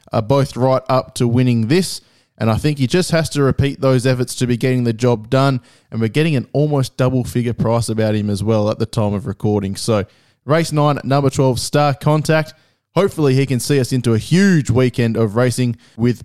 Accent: Australian